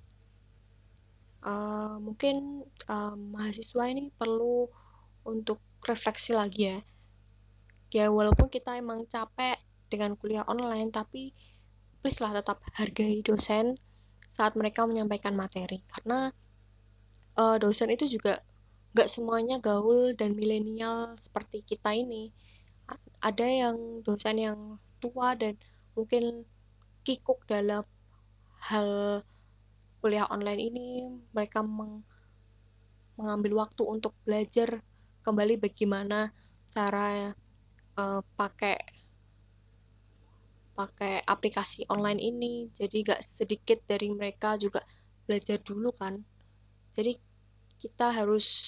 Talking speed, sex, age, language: 100 wpm, female, 10-29, Indonesian